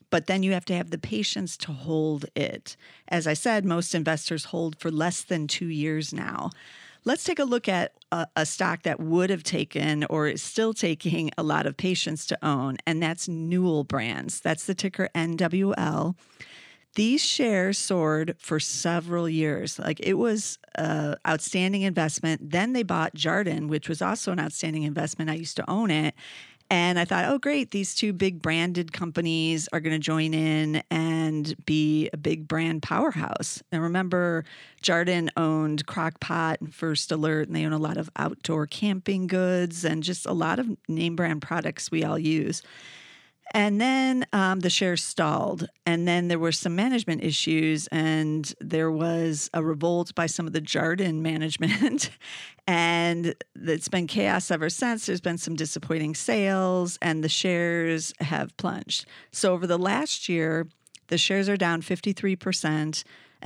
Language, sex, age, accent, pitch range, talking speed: English, female, 40-59, American, 155-185 Hz, 170 wpm